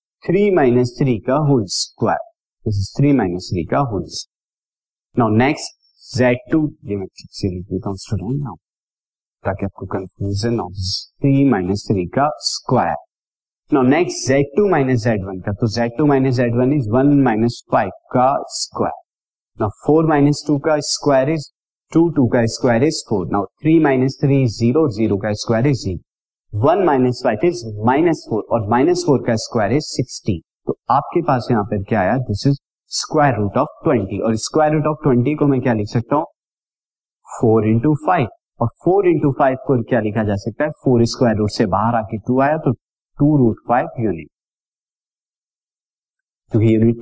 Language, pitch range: Hindi, 110-145 Hz